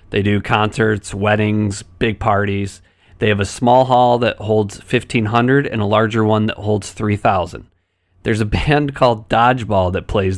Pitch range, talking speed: 95-120 Hz, 160 wpm